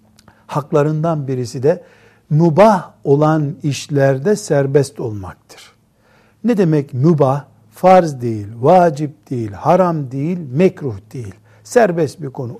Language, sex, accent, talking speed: Turkish, male, native, 105 wpm